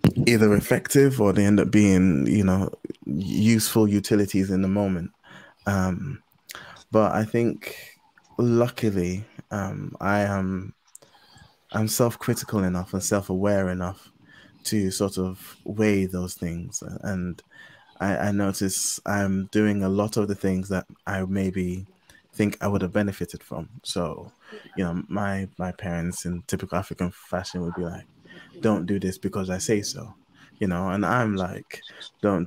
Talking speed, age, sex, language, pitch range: 150 wpm, 20-39, male, English, 95-105 Hz